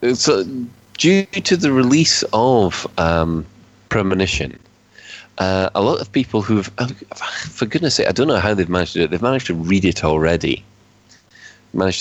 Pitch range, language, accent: 85-110 Hz, English, British